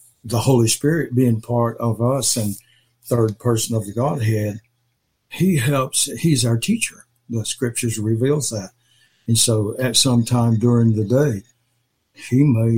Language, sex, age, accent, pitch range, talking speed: English, male, 60-79, American, 115-130 Hz, 150 wpm